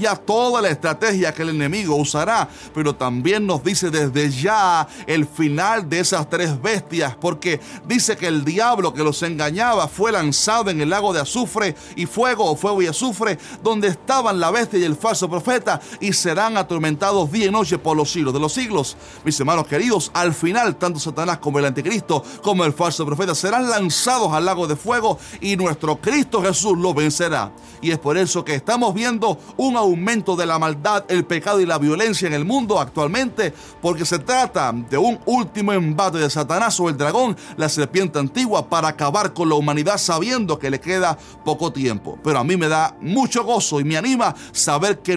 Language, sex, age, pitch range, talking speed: Spanish, male, 30-49, 155-210 Hz, 195 wpm